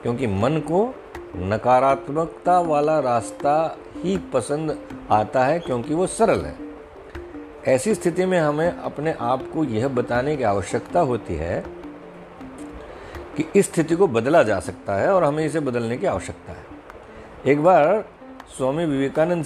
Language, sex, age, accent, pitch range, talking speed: Hindi, male, 50-69, native, 105-155 Hz, 140 wpm